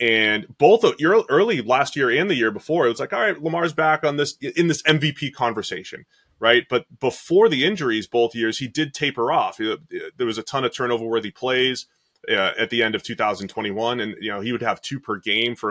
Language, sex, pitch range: English, male, 120-160 Hz